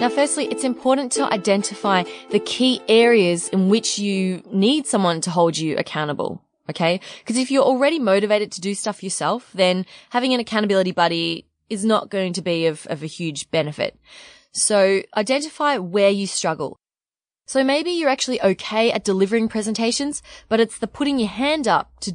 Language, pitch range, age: English, 180-245 Hz, 20-39